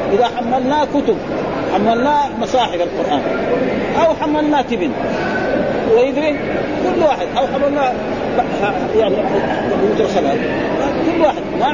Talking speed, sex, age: 95 wpm, male, 40-59